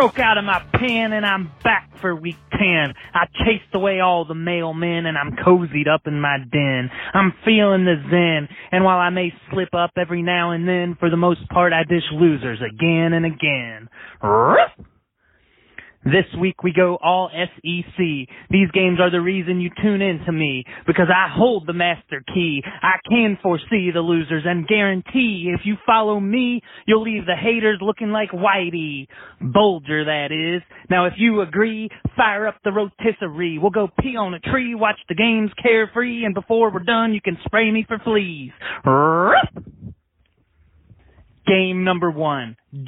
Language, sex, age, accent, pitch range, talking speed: English, male, 30-49, American, 165-200 Hz, 170 wpm